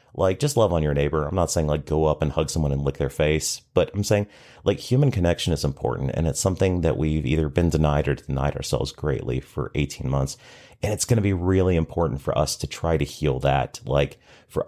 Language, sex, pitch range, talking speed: English, male, 75-95 Hz, 235 wpm